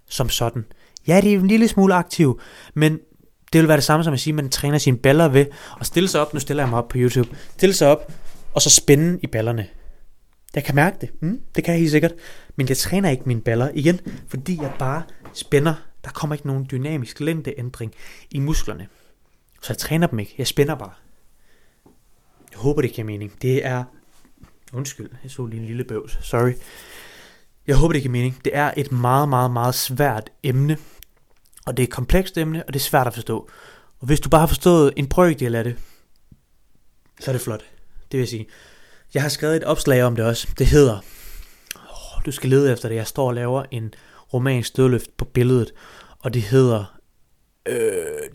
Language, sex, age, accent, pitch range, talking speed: Danish, male, 30-49, native, 120-155 Hz, 205 wpm